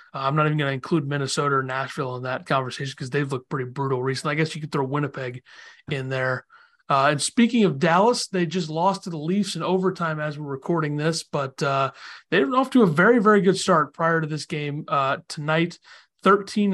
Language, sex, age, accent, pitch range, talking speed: English, male, 30-49, American, 150-185 Hz, 220 wpm